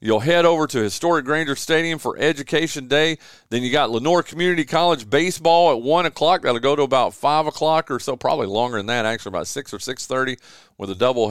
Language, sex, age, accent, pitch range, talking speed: English, male, 40-59, American, 130-185 Hz, 210 wpm